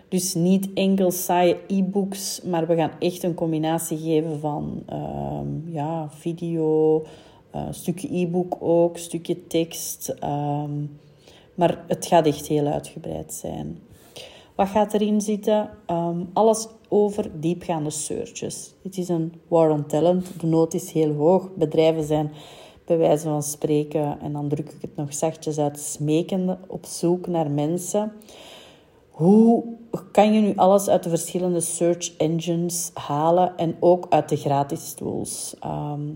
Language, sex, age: Dutch, female, 30-49